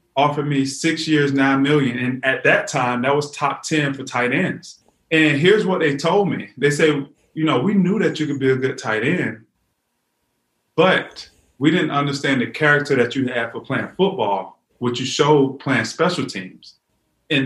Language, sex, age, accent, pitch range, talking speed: English, male, 30-49, American, 130-155 Hz, 195 wpm